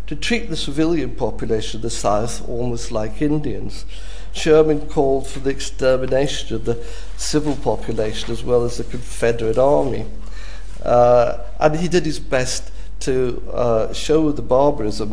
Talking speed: 145 wpm